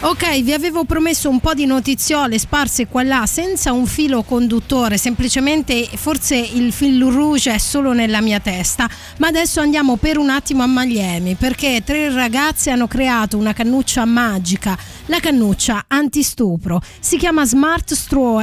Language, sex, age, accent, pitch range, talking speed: Italian, female, 30-49, native, 220-275 Hz, 155 wpm